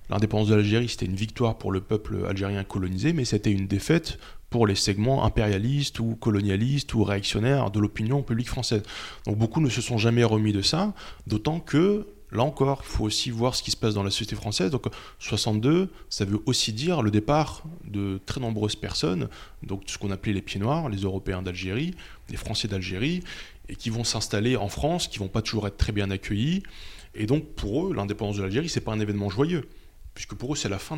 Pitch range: 100-130 Hz